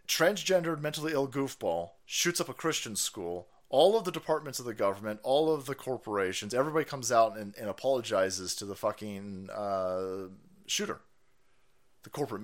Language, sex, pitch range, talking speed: English, male, 125-170 Hz, 160 wpm